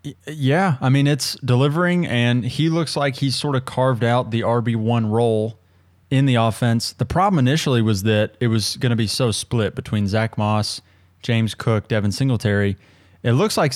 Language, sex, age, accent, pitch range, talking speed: English, male, 20-39, American, 100-125 Hz, 185 wpm